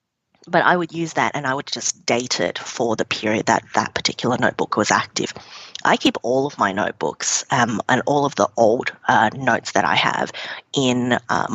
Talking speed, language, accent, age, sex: 205 wpm, English, Australian, 30-49, female